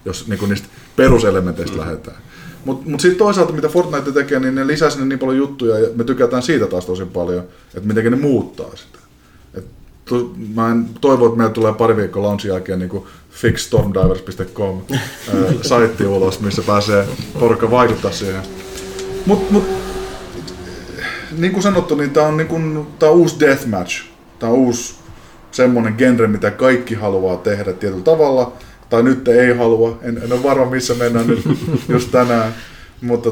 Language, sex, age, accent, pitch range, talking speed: Finnish, male, 20-39, native, 100-125 Hz, 155 wpm